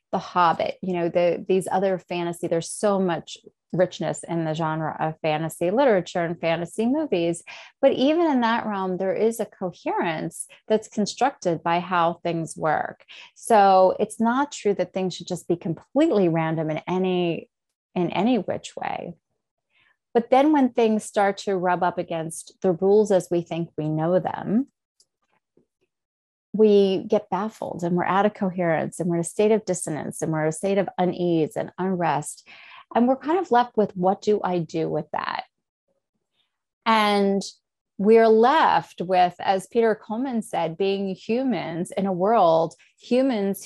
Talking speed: 165 wpm